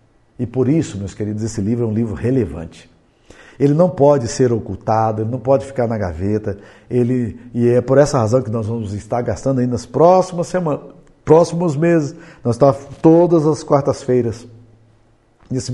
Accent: Brazilian